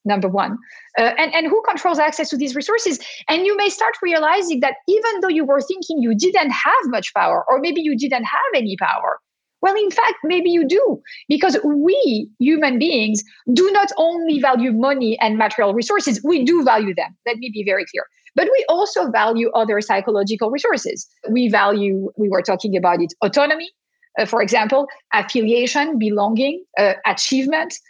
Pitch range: 220-315 Hz